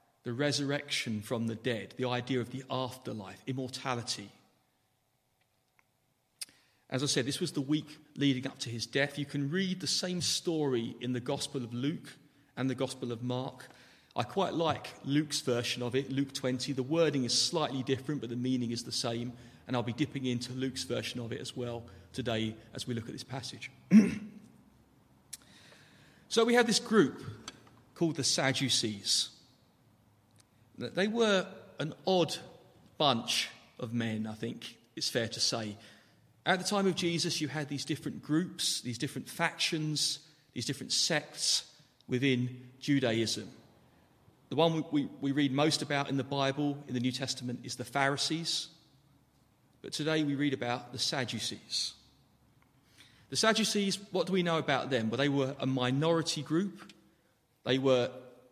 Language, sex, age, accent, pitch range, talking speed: English, male, 40-59, British, 120-150 Hz, 160 wpm